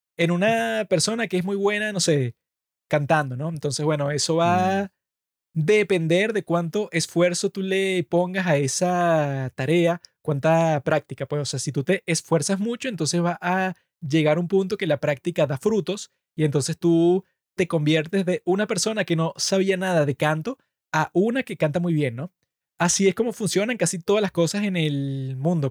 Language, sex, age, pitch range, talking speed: Spanish, male, 20-39, 155-190 Hz, 185 wpm